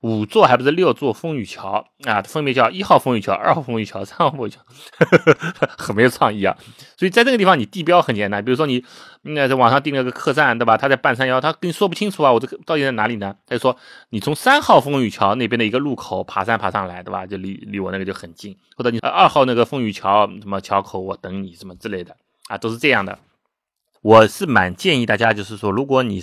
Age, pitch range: 30-49, 105-145 Hz